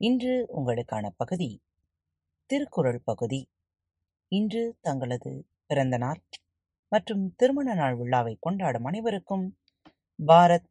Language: Tamil